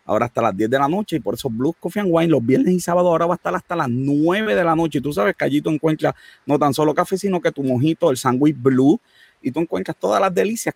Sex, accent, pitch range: male, Venezuelan, 130-165 Hz